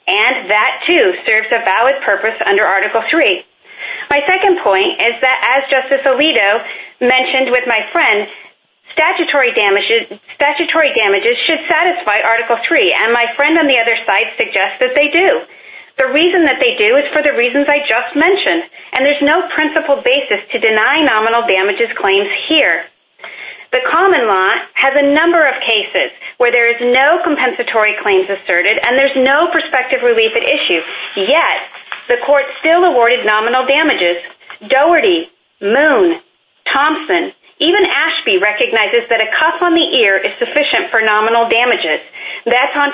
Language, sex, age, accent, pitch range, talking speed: English, female, 40-59, American, 235-335 Hz, 155 wpm